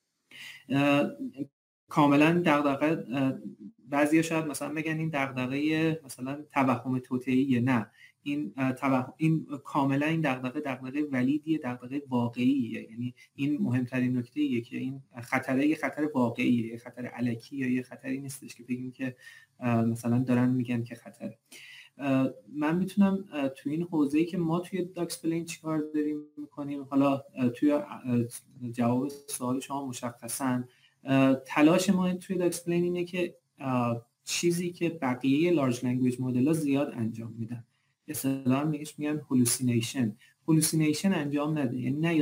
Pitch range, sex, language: 125-155 Hz, male, Persian